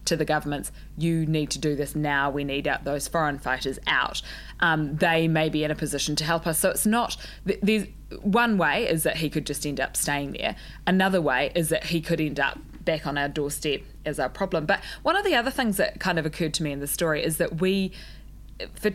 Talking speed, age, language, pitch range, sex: 240 wpm, 20-39, English, 145-165 Hz, female